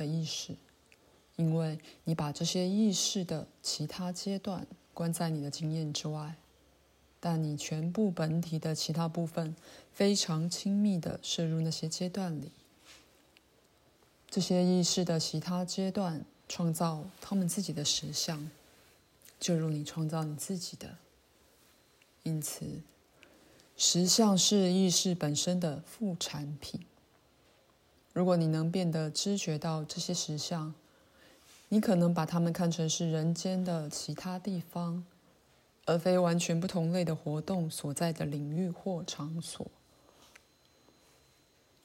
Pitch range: 155-180 Hz